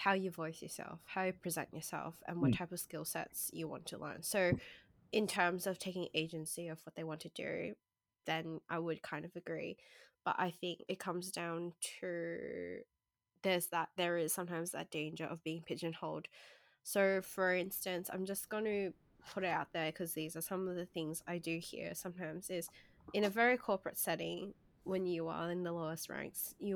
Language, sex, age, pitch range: English, female, 10-29, 165-190 Hz